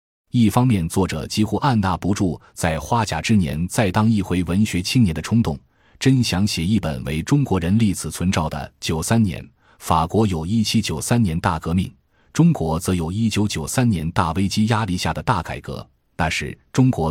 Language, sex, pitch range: Chinese, male, 80-110 Hz